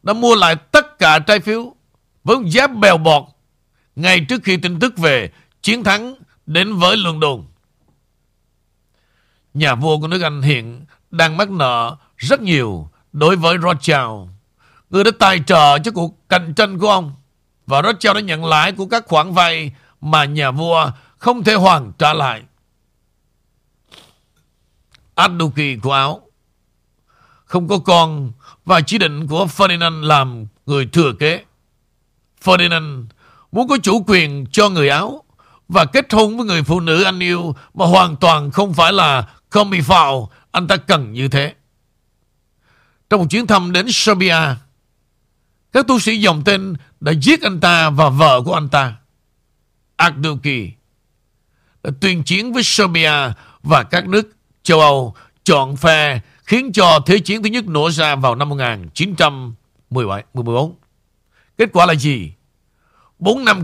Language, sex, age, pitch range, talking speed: Vietnamese, male, 60-79, 130-190 Hz, 150 wpm